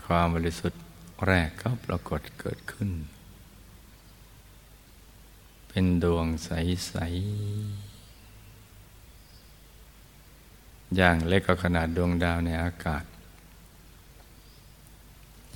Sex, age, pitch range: male, 60-79, 85-100 Hz